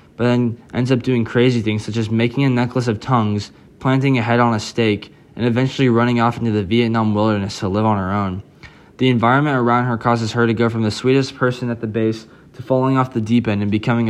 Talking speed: 240 wpm